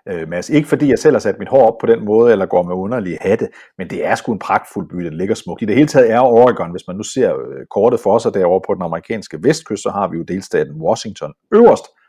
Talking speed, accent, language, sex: 265 wpm, native, Danish, male